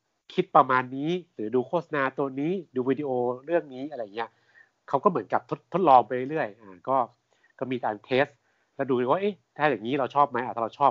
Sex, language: male, Thai